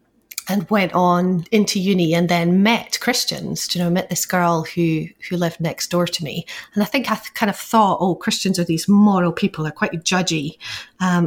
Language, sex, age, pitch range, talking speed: English, female, 30-49, 170-200 Hz, 215 wpm